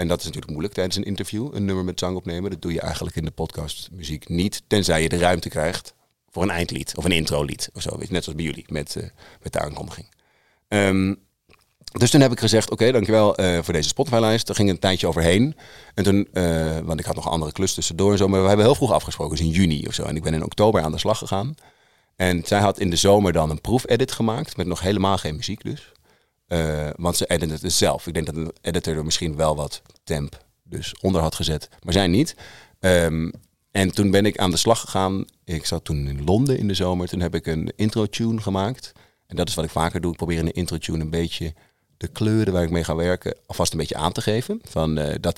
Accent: Dutch